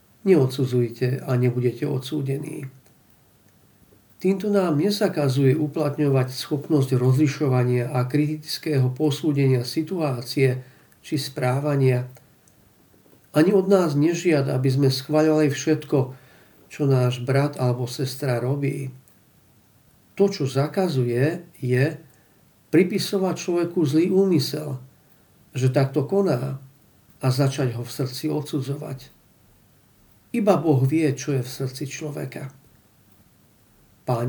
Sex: male